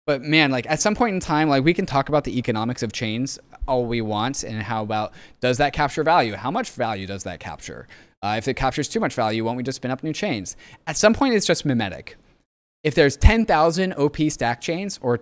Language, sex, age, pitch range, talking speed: English, male, 20-39, 115-155 Hz, 240 wpm